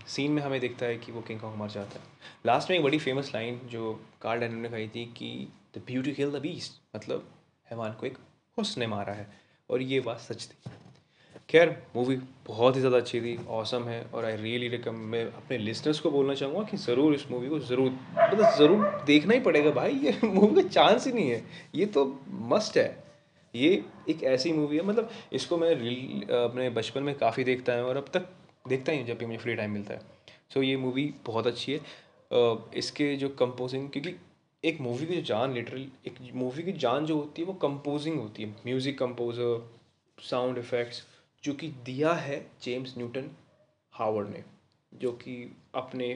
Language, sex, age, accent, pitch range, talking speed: Hindi, male, 20-39, native, 115-145 Hz, 200 wpm